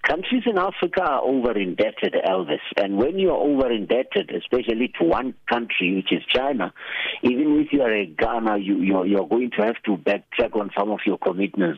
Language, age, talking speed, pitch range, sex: English, 60-79, 180 wpm, 100-125 Hz, male